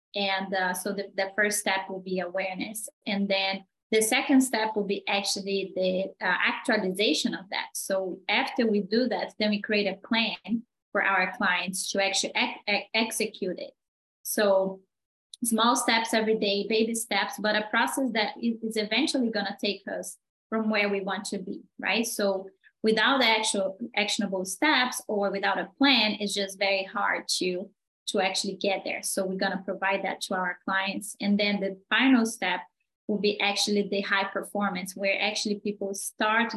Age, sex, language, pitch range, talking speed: 20-39, female, English, 195-225 Hz, 170 wpm